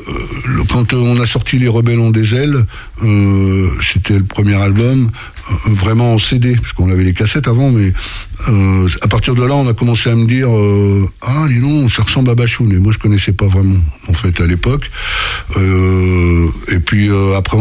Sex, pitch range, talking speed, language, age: male, 95-115 Hz, 210 wpm, French, 60-79